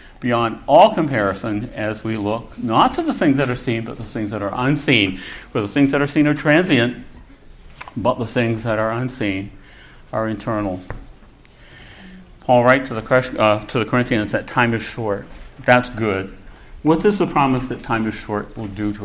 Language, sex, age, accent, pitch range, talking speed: English, male, 60-79, American, 105-130 Hz, 185 wpm